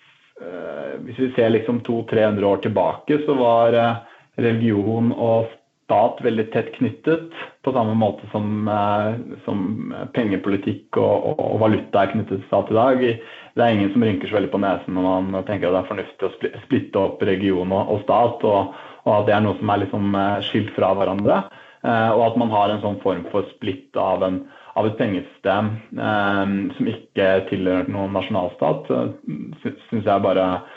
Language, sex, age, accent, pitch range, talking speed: English, male, 20-39, Norwegian, 95-115 Hz, 170 wpm